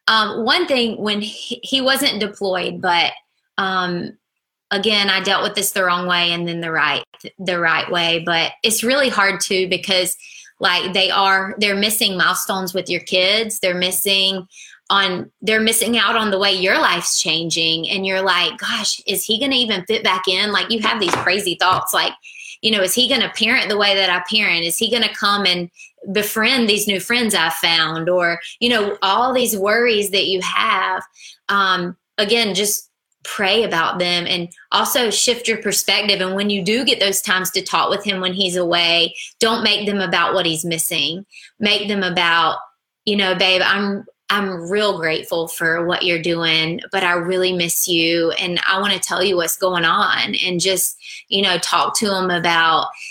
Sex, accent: female, American